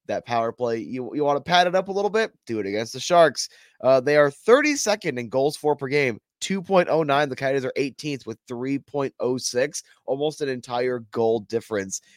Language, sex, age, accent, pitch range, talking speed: English, male, 20-39, American, 120-155 Hz, 190 wpm